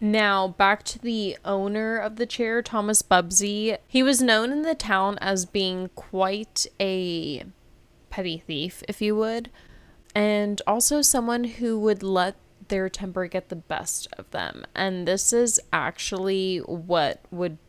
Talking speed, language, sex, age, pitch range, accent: 150 wpm, English, female, 20-39, 175-215 Hz, American